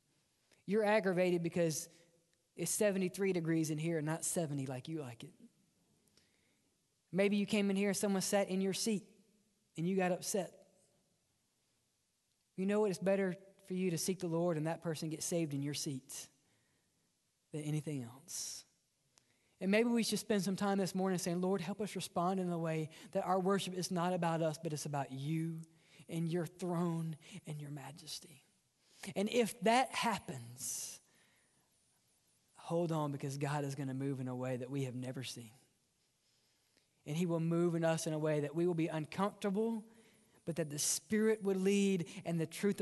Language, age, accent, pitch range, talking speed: English, 20-39, American, 155-190 Hz, 180 wpm